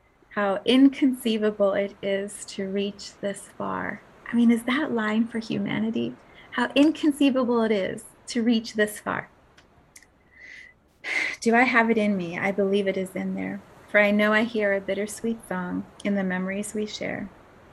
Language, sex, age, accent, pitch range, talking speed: English, female, 30-49, American, 190-230 Hz, 165 wpm